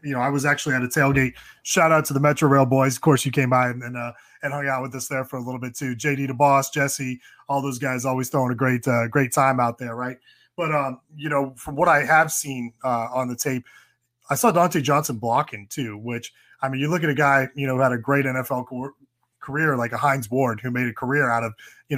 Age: 20-39